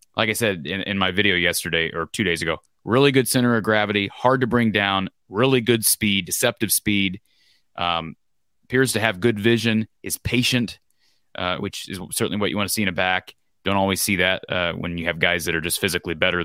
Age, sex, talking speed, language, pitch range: 30-49, male, 220 wpm, English, 90-120 Hz